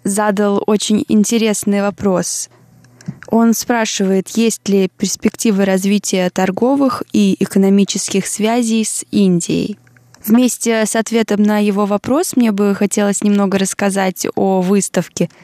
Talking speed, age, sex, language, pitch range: 115 wpm, 20-39, female, Russian, 190-220 Hz